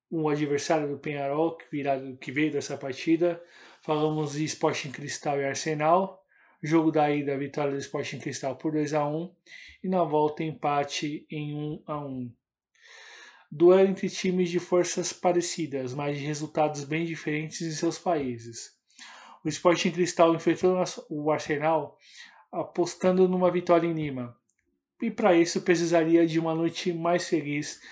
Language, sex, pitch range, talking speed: Portuguese, male, 150-175 Hz, 145 wpm